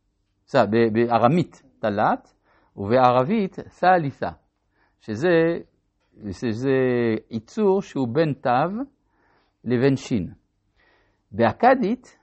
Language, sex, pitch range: Hebrew, male, 110-165 Hz